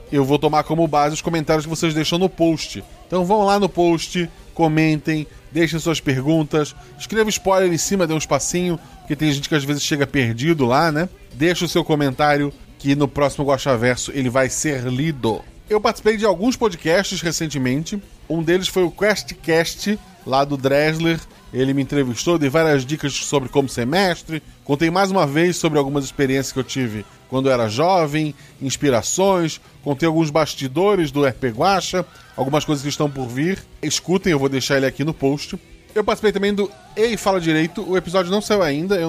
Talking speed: 190 wpm